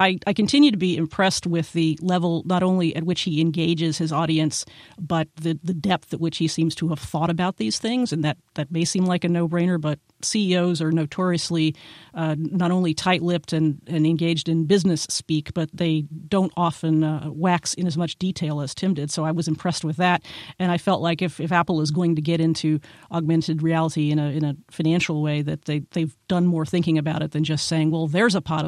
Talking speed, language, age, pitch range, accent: 220 wpm, English, 40-59, 155-180 Hz, American